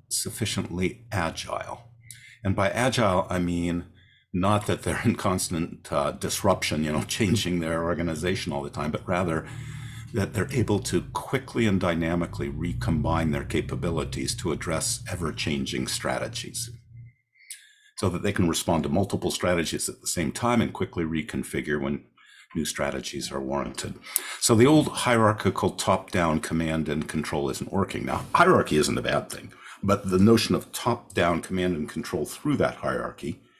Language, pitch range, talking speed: English, 85-115 Hz, 150 wpm